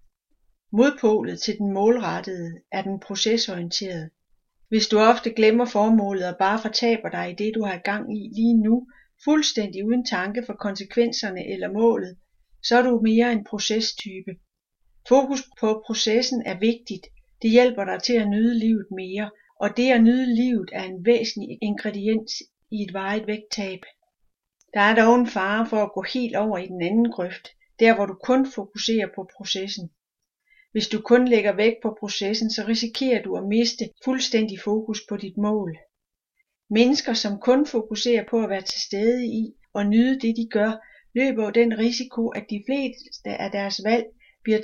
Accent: native